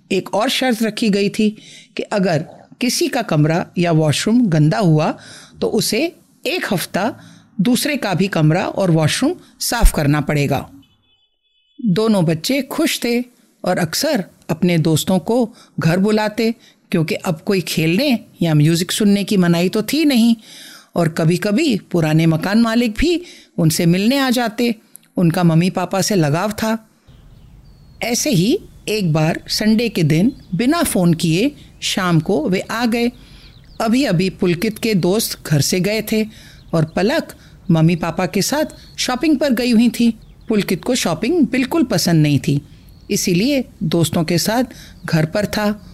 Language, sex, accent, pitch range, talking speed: Hindi, female, native, 170-235 Hz, 155 wpm